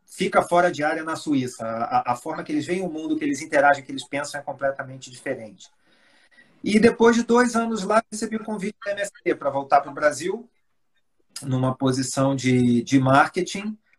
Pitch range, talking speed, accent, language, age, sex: 135-175 Hz, 195 wpm, Brazilian, Portuguese, 40-59, male